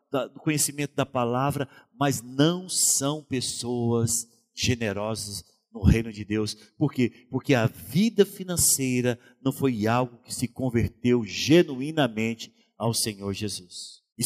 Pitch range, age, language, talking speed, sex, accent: 130-200 Hz, 50-69, Portuguese, 125 wpm, male, Brazilian